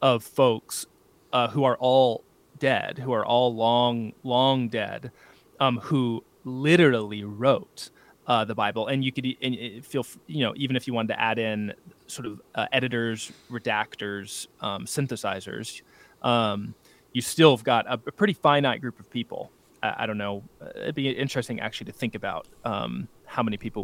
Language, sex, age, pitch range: English, male, 20-39, 115-145 Hz